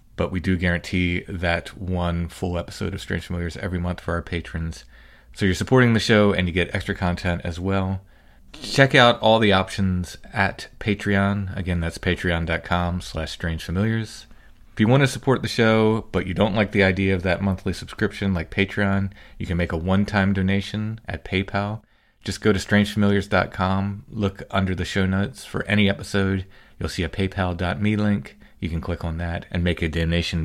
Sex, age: male, 30-49